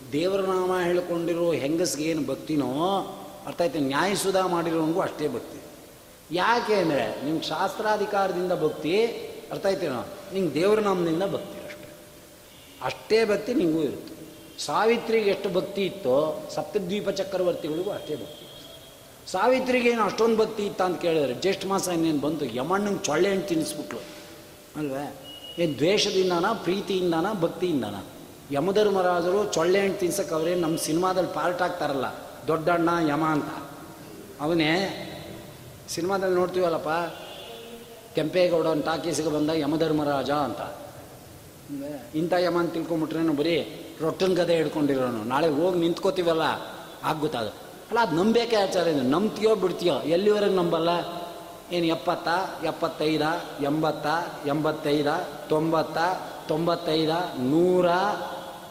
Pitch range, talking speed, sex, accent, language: 155-190 Hz, 100 wpm, male, native, Kannada